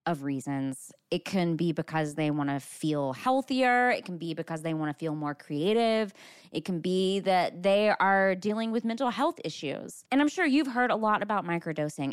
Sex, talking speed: female, 205 wpm